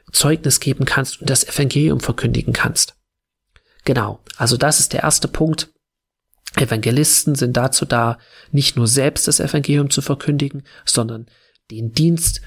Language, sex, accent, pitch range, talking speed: German, male, German, 120-140 Hz, 140 wpm